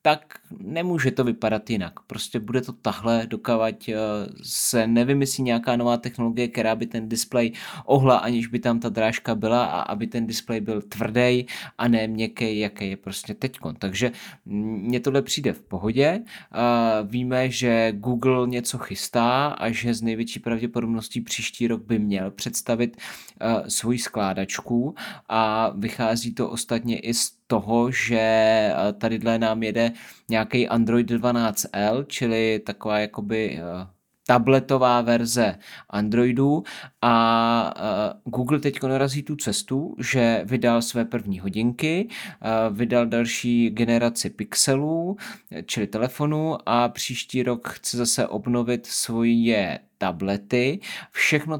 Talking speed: 125 wpm